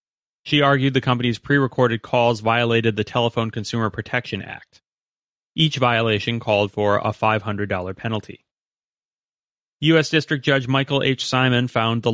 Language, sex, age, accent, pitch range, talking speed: English, male, 30-49, American, 105-125 Hz, 135 wpm